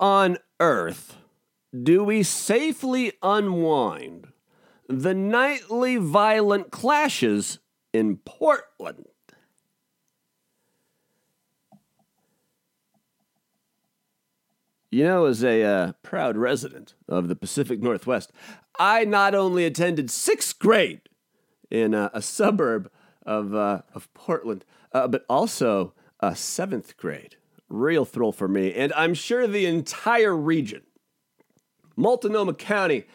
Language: English